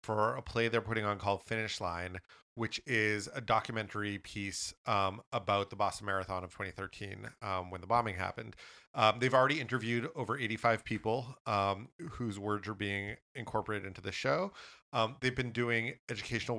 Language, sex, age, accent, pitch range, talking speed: English, male, 30-49, American, 100-120 Hz, 170 wpm